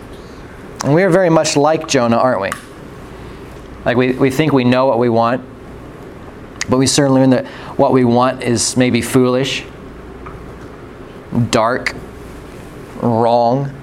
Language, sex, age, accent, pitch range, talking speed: English, male, 20-39, American, 120-145 Hz, 135 wpm